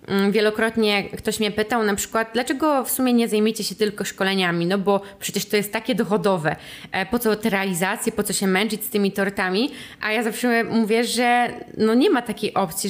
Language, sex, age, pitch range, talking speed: Polish, female, 20-39, 195-225 Hz, 195 wpm